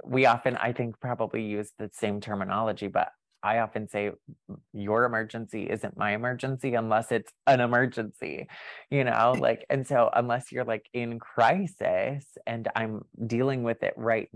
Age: 20-39